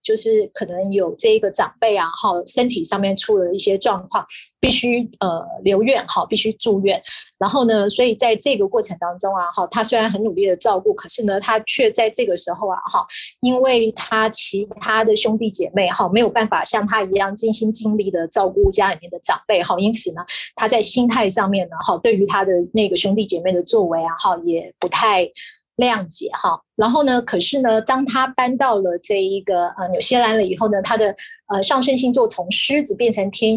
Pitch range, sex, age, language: 195-250 Hz, female, 30-49, Chinese